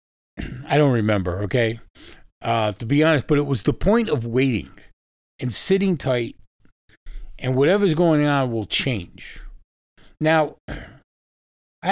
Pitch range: 110-160 Hz